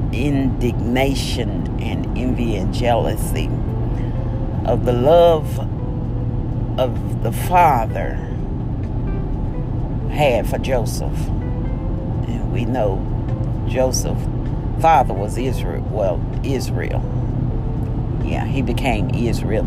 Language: English